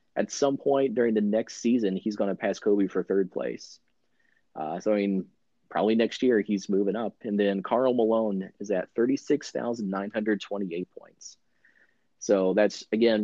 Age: 30-49